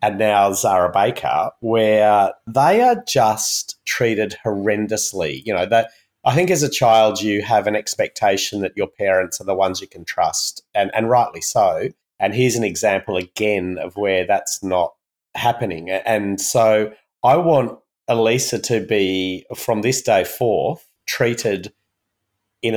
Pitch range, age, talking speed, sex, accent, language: 95-115 Hz, 30-49, 155 wpm, male, Australian, English